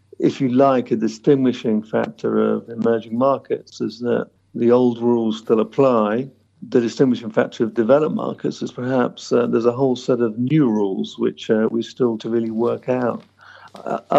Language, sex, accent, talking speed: English, male, British, 175 wpm